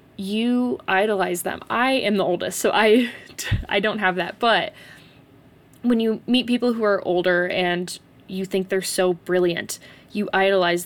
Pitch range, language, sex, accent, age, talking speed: 180-215 Hz, English, female, American, 20-39, 160 wpm